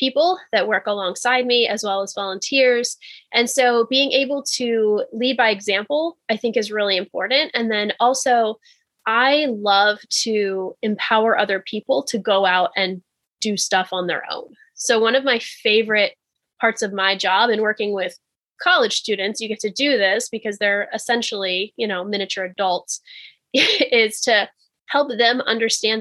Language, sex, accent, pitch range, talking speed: English, female, American, 205-250 Hz, 165 wpm